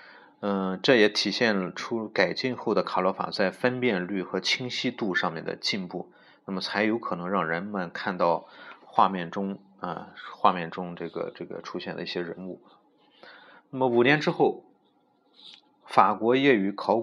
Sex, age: male, 30-49